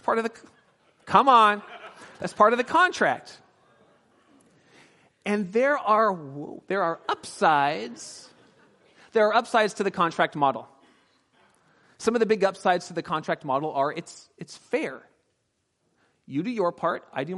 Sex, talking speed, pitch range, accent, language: male, 145 wpm, 145-195 Hz, American, English